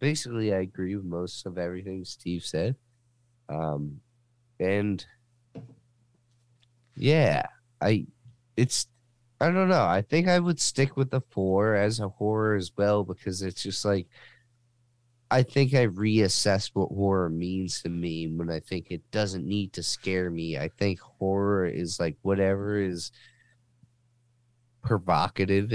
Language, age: English, 30-49